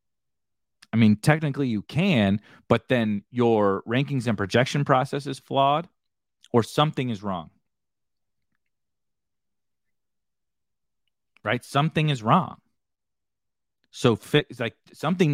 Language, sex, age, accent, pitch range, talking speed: English, male, 30-49, American, 110-135 Hz, 100 wpm